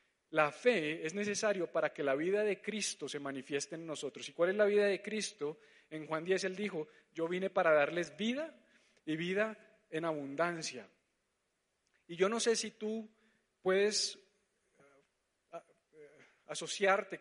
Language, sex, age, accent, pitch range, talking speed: Spanish, male, 40-59, Colombian, 155-205 Hz, 150 wpm